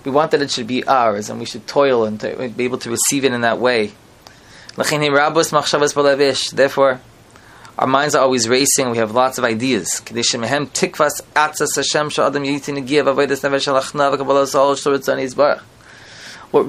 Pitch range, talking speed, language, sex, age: 125-150 Hz, 115 wpm, English, male, 20-39